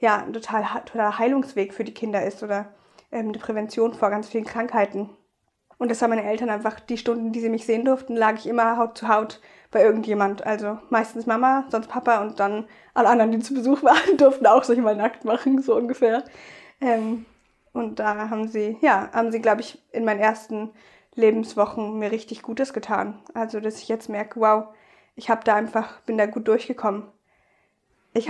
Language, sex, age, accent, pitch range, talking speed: German, female, 20-39, German, 210-235 Hz, 195 wpm